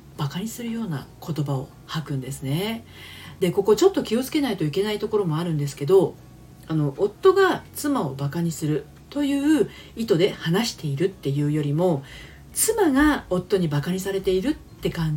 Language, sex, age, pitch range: Japanese, female, 40-59, 140-215 Hz